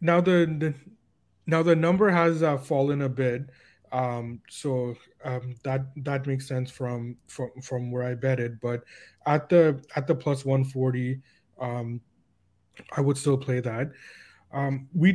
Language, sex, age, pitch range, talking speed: English, male, 20-39, 125-150 Hz, 160 wpm